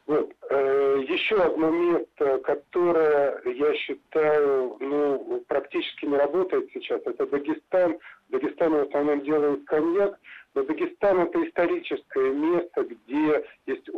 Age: 50-69